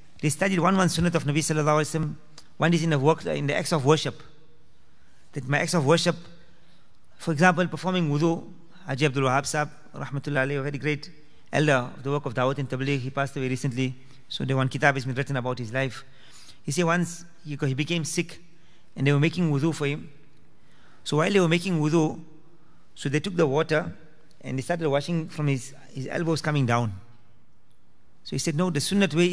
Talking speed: 205 wpm